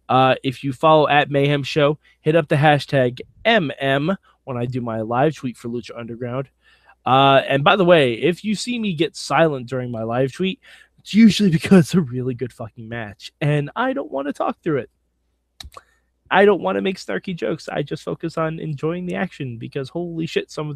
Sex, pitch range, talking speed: male, 130-200 Hz, 210 wpm